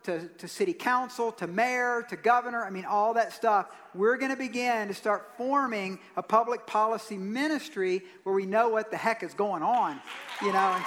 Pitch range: 210-255 Hz